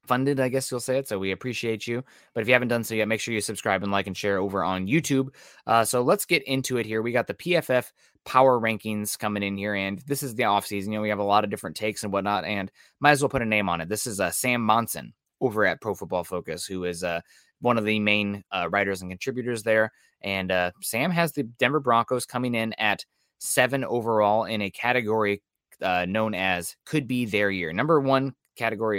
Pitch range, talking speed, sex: 100-125 Hz, 240 wpm, male